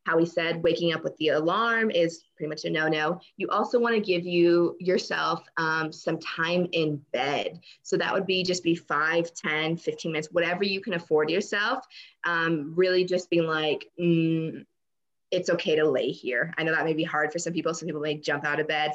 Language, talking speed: English, 210 wpm